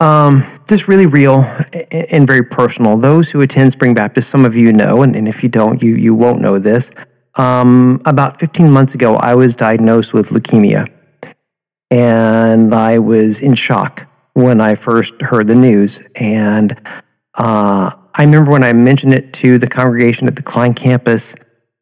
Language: English